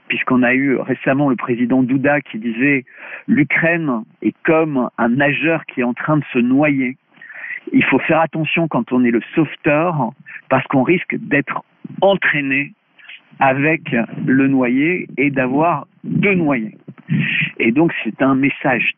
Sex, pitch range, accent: male, 125-165 Hz, French